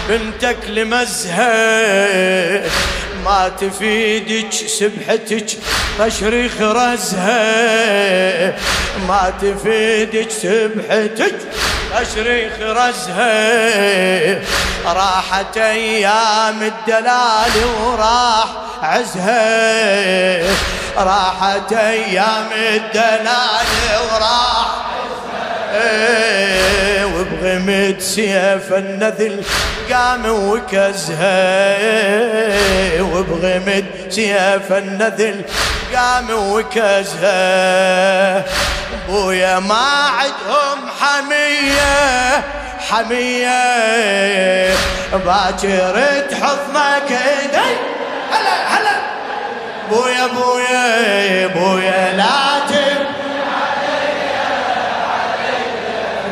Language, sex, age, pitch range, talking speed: Arabic, male, 30-49, 195-245 Hz, 50 wpm